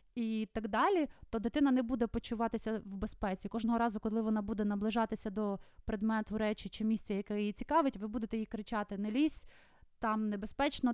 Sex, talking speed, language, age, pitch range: female, 175 wpm, Ukrainian, 20-39, 210-240 Hz